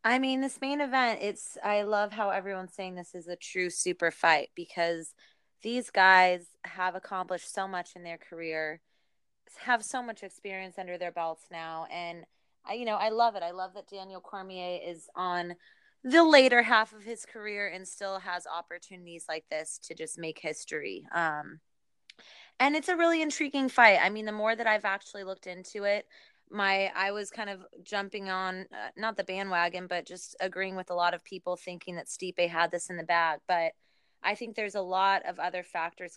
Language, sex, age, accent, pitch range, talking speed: English, female, 20-39, American, 175-200 Hz, 195 wpm